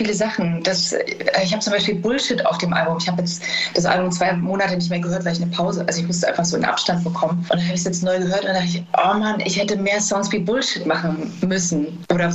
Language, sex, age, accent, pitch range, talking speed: German, female, 20-39, German, 175-210 Hz, 265 wpm